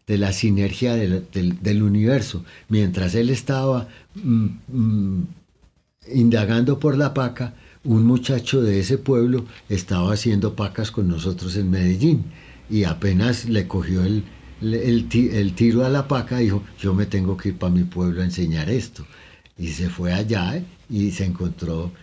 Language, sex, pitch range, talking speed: Spanish, male, 90-110 Hz, 160 wpm